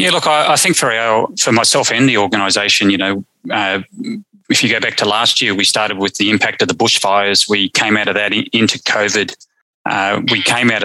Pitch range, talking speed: 105-135 Hz, 225 wpm